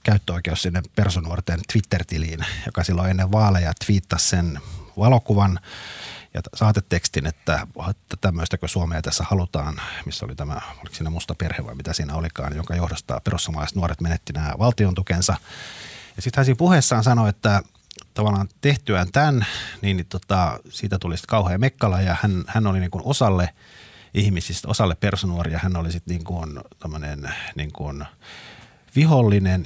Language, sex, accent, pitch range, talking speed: Finnish, male, native, 85-105 Hz, 145 wpm